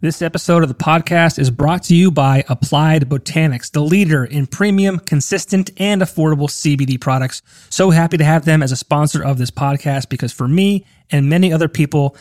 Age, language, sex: 30-49, English, male